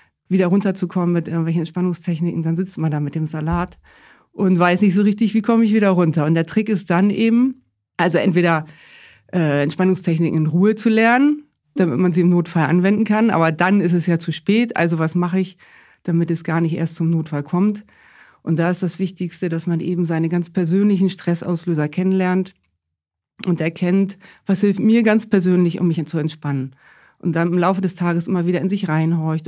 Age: 40-59